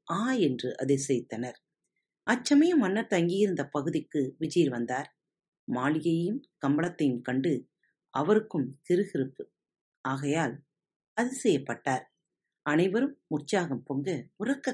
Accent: native